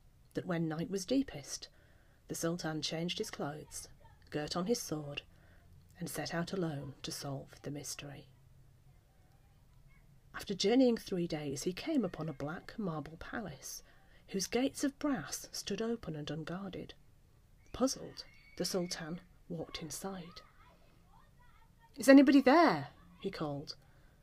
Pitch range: 145-205 Hz